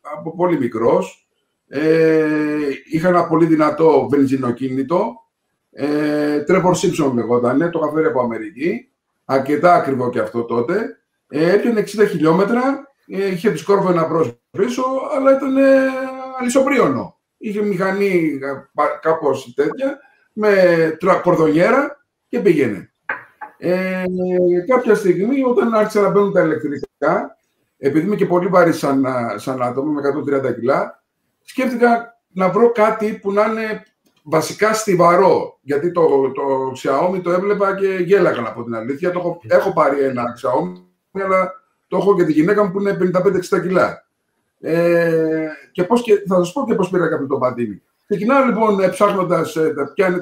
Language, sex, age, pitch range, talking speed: Greek, male, 50-69, 150-210 Hz, 140 wpm